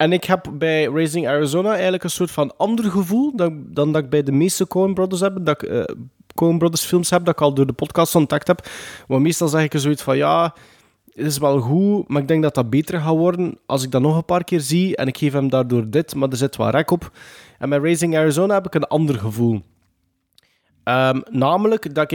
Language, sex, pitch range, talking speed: Dutch, male, 130-160 Hz, 240 wpm